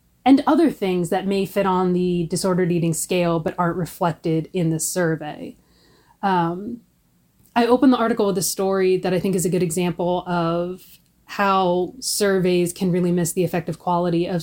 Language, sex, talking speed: English, female, 175 wpm